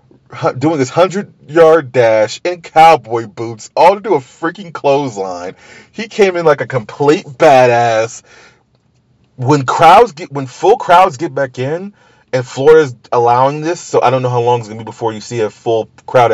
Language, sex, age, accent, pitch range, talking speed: English, male, 30-49, American, 115-165 Hz, 180 wpm